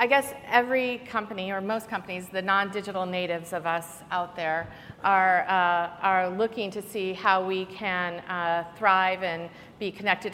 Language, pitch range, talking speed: English, 175-195 Hz, 165 wpm